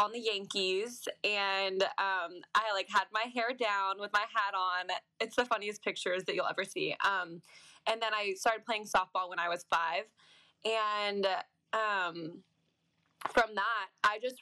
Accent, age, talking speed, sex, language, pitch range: American, 20-39, 165 wpm, female, English, 185-220 Hz